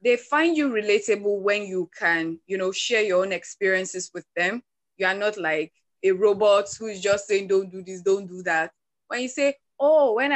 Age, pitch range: 20-39, 190-265 Hz